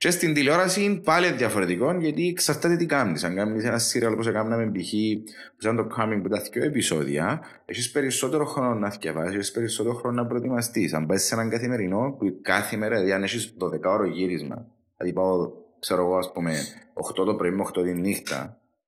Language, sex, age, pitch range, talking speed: Greek, male, 30-49, 95-130 Hz, 200 wpm